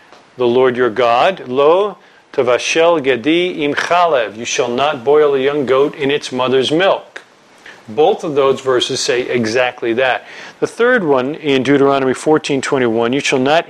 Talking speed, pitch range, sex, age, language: 160 wpm, 125-155 Hz, male, 40-59, English